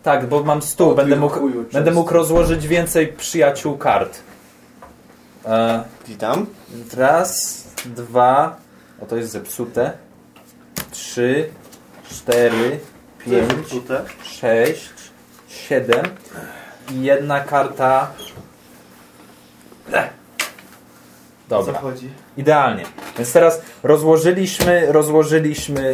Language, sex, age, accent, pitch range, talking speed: English, male, 20-39, Polish, 120-155 Hz, 75 wpm